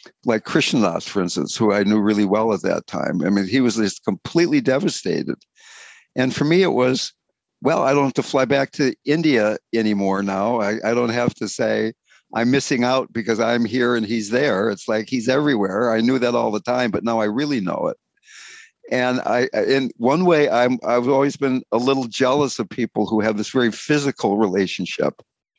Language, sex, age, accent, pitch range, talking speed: English, male, 60-79, American, 110-140 Hz, 200 wpm